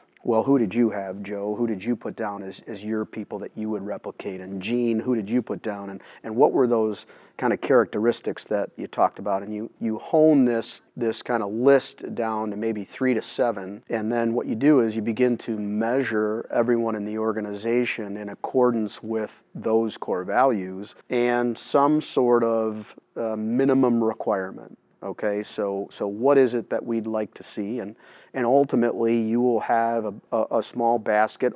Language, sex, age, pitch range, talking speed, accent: English, male, 30-49, 105-120 Hz, 195 wpm, American